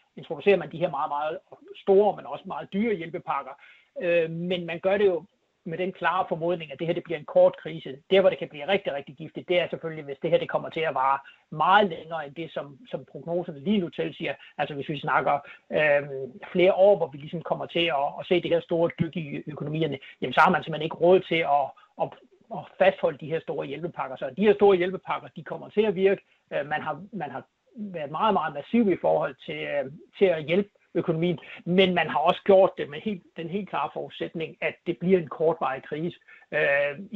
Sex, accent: male, native